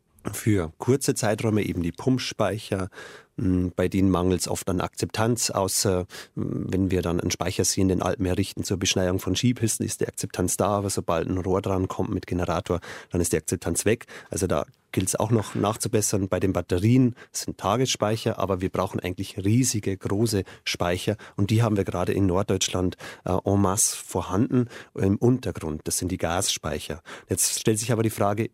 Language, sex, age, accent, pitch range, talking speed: German, male, 30-49, German, 90-115 Hz, 185 wpm